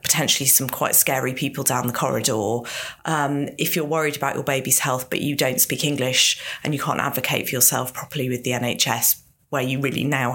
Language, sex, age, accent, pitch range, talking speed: English, female, 40-59, British, 135-170 Hz, 205 wpm